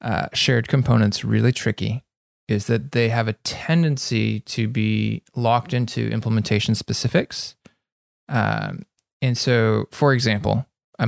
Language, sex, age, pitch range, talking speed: English, male, 20-39, 110-130 Hz, 125 wpm